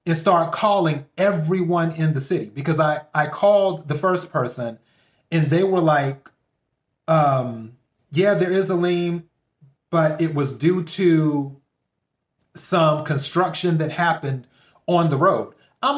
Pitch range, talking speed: 140-180 Hz, 140 wpm